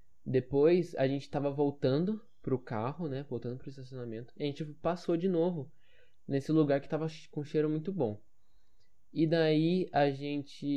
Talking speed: 160 wpm